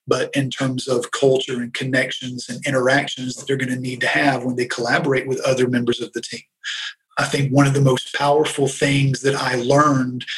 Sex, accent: male, American